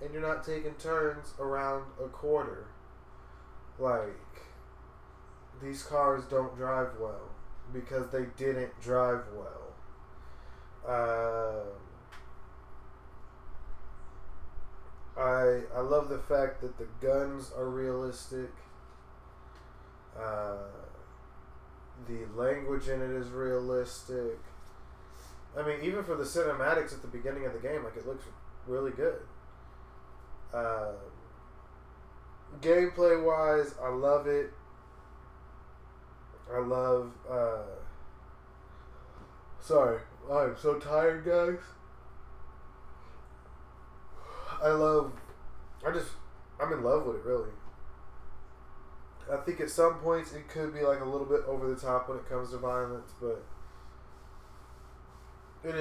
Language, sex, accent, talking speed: English, male, American, 110 wpm